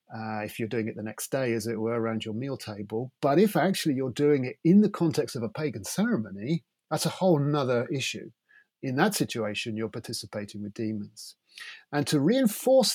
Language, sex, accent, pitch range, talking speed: English, male, British, 115-180 Hz, 200 wpm